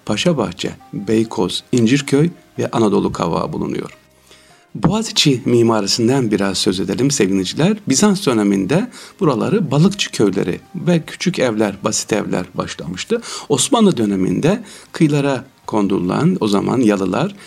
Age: 60-79